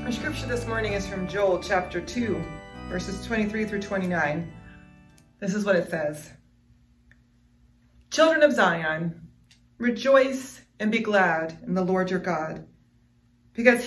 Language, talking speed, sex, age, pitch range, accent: English, 135 wpm, female, 40-59, 160-220 Hz, American